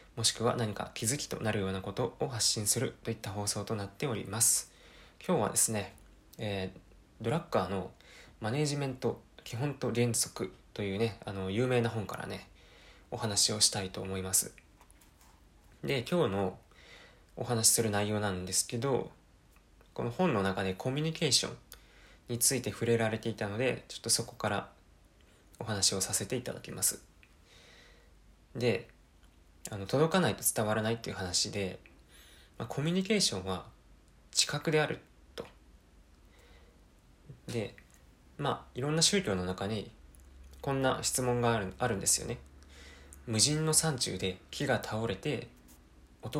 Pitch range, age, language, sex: 90-125 Hz, 20-39, Japanese, male